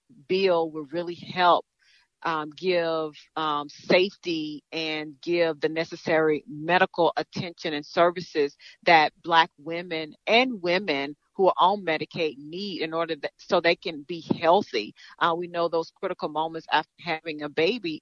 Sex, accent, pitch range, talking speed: female, American, 155-175 Hz, 145 wpm